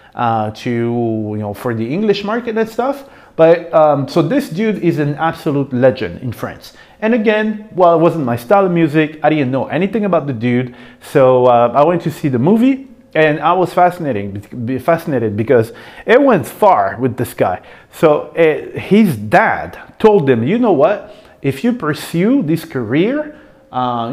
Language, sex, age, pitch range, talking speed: English, male, 40-59, 125-185 Hz, 180 wpm